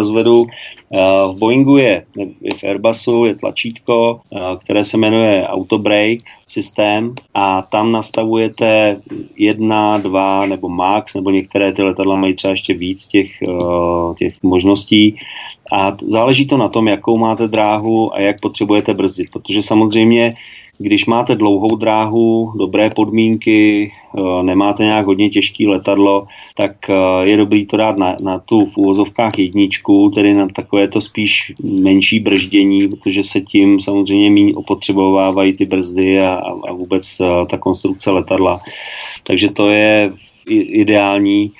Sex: male